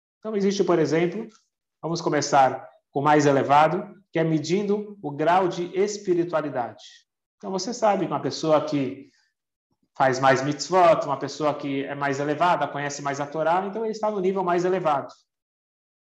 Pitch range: 140-190 Hz